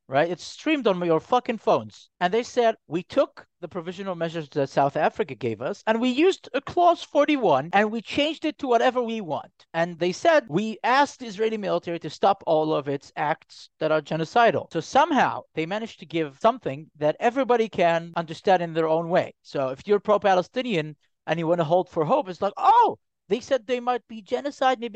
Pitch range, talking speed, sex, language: 160-245 Hz, 210 wpm, male, English